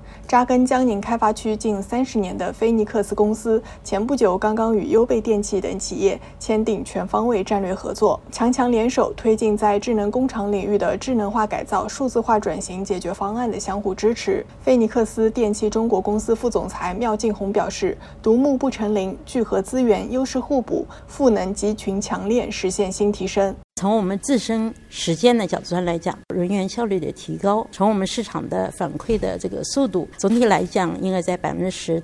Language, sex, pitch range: Chinese, female, 190-230 Hz